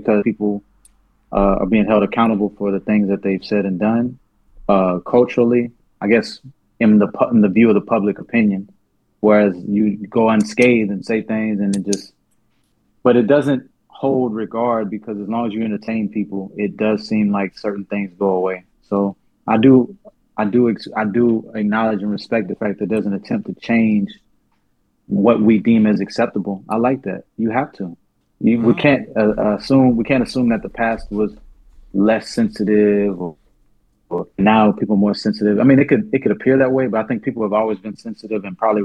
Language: English